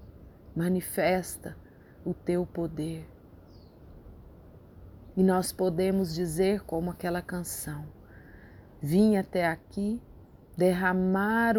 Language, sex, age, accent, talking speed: Portuguese, female, 30-49, Brazilian, 80 wpm